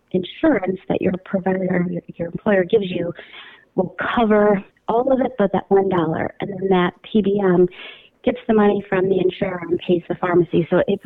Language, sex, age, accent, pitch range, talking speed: English, female, 30-49, American, 185-220 Hz, 185 wpm